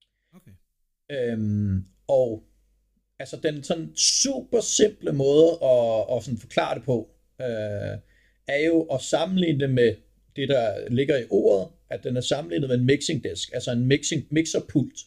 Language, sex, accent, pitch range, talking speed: Danish, male, native, 115-155 Hz, 125 wpm